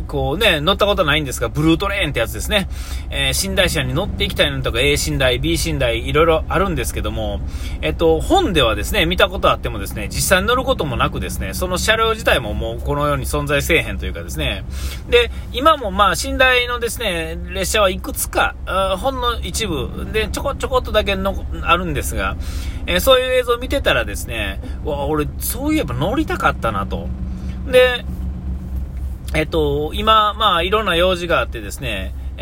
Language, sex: Japanese, male